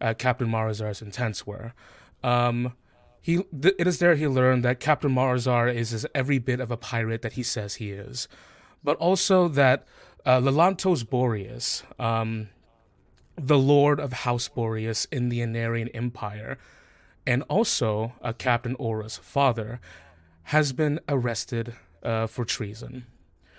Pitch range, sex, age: 115-145 Hz, male, 20-39